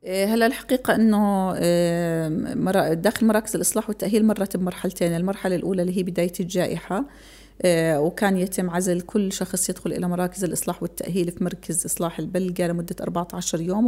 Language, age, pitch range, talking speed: Arabic, 30-49, 175-195 Hz, 140 wpm